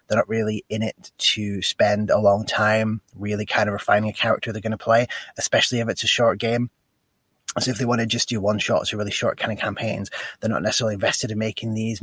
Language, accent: English, British